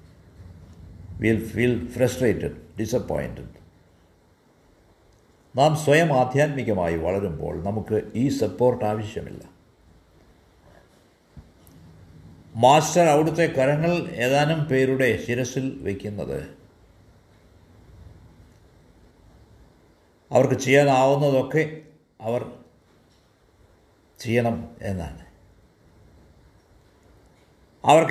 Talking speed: 55 wpm